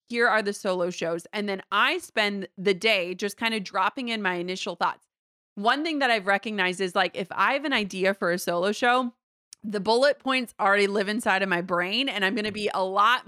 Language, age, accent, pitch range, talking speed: English, 30-49, American, 190-230 Hz, 230 wpm